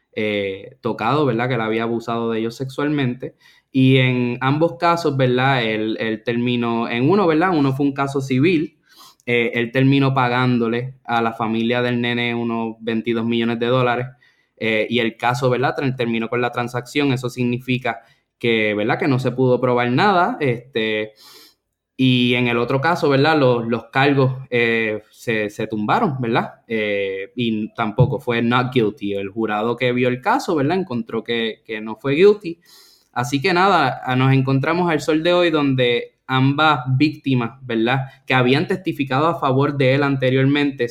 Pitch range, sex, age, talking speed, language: 115-135 Hz, male, 10-29, 170 wpm, English